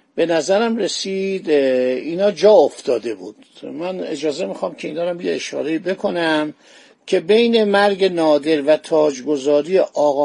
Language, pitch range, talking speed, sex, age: Persian, 155-205 Hz, 135 wpm, male, 50-69